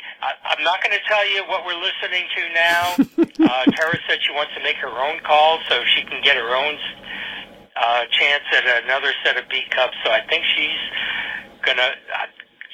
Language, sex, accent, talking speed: English, male, American, 200 wpm